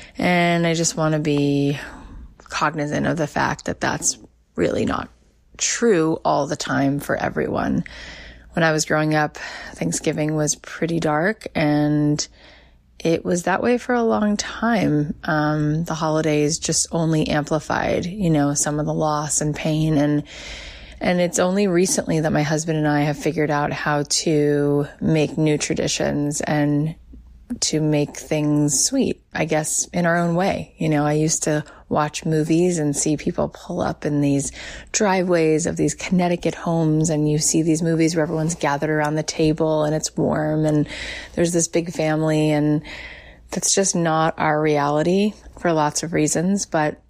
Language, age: English, 20-39